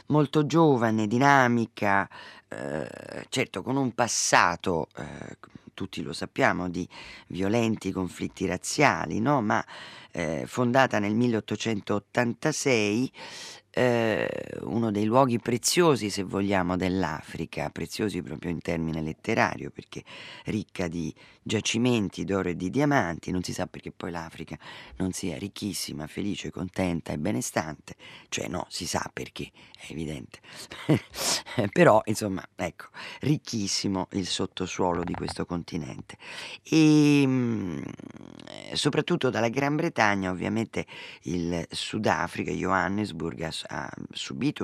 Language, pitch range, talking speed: Italian, 85-120 Hz, 110 wpm